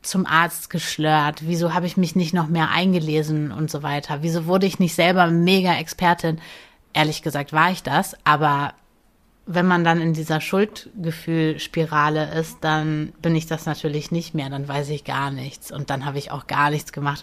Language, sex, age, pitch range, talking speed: German, female, 30-49, 150-170 Hz, 190 wpm